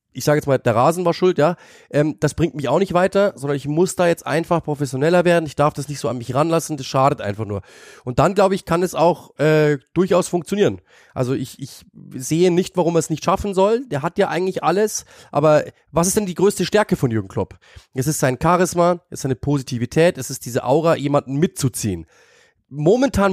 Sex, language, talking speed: male, German, 225 wpm